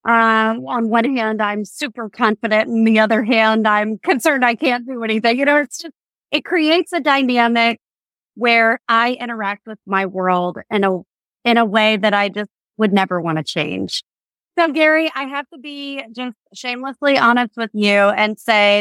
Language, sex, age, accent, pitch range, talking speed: English, female, 30-49, American, 210-270 Hz, 185 wpm